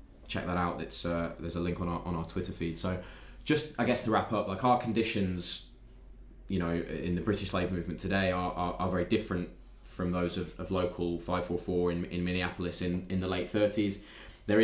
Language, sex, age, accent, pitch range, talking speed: English, male, 20-39, British, 85-95 Hz, 215 wpm